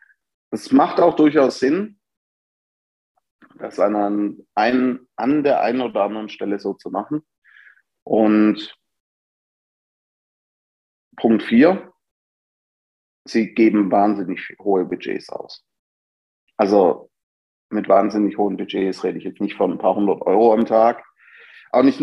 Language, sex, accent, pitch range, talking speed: German, male, German, 100-125 Hz, 115 wpm